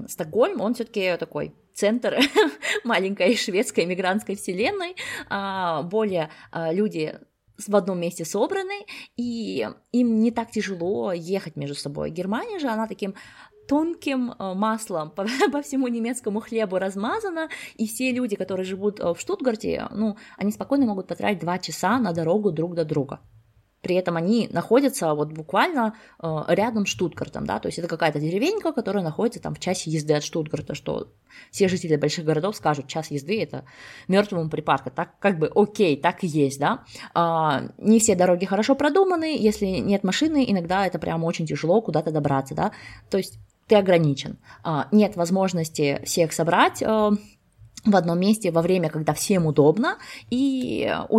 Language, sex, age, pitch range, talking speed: Russian, female, 20-39, 165-220 Hz, 150 wpm